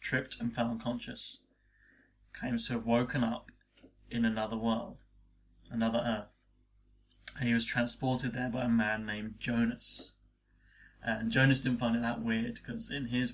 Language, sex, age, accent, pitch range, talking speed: English, male, 20-39, British, 110-120 Hz, 155 wpm